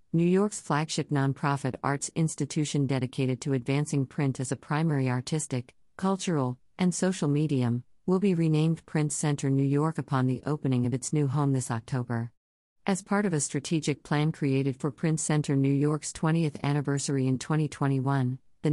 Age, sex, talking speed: 50-69, female, 165 wpm